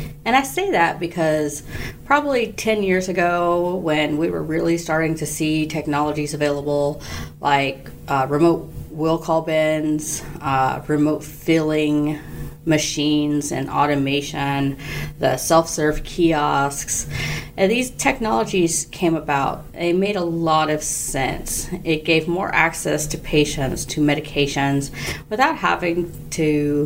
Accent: American